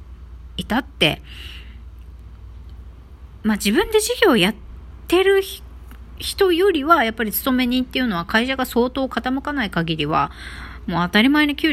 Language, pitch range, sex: Japanese, 155-255 Hz, female